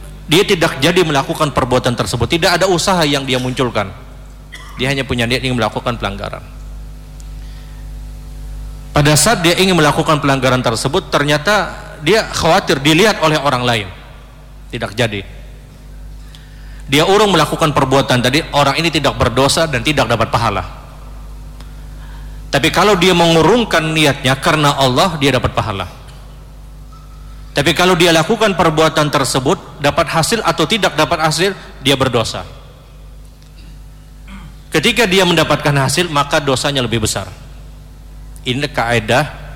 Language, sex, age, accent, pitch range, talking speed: Indonesian, male, 40-59, native, 125-160 Hz, 125 wpm